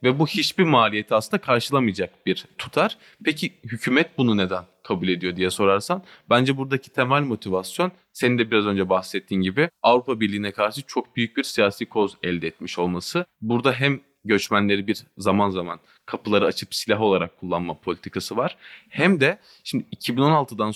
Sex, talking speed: male, 155 wpm